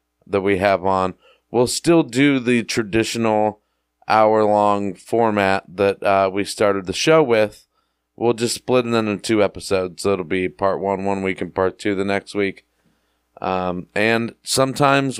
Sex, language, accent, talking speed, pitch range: male, English, American, 160 wpm, 95-115 Hz